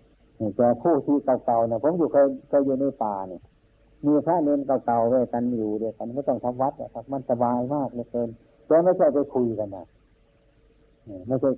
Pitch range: 110-125 Hz